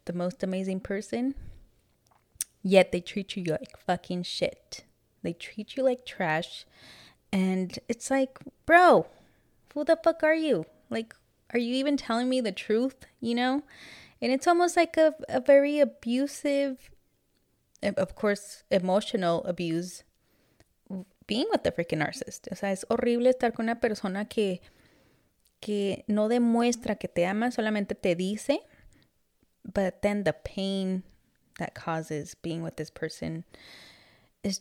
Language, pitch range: English, 180-235 Hz